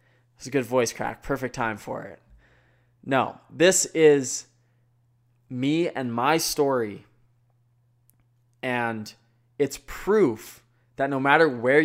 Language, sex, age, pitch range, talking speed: English, male, 20-39, 120-150 Hz, 115 wpm